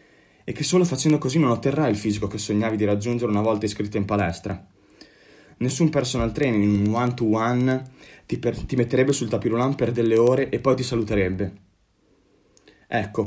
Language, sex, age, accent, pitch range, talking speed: Italian, male, 20-39, native, 100-130 Hz, 170 wpm